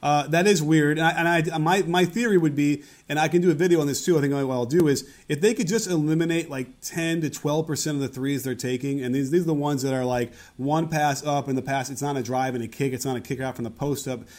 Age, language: 30-49, English